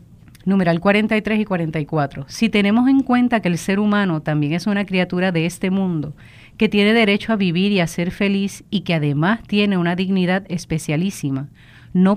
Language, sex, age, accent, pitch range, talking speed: Spanish, female, 40-59, American, 155-205 Hz, 180 wpm